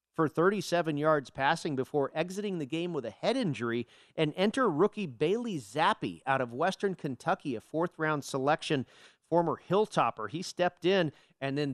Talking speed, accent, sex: 160 wpm, American, male